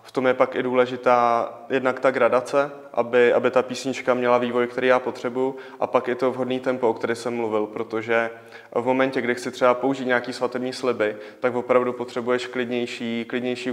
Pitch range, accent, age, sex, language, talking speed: 120-130 Hz, native, 20-39, male, Czech, 190 wpm